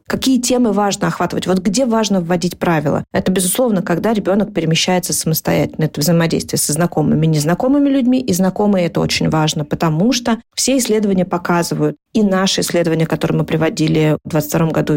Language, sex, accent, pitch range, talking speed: Russian, female, native, 160-200 Hz, 170 wpm